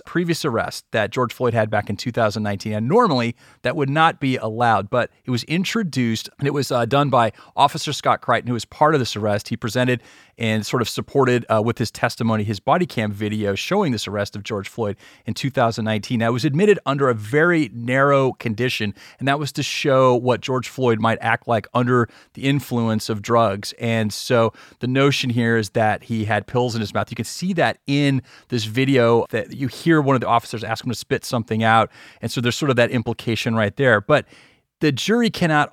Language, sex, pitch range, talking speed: English, male, 115-140 Hz, 215 wpm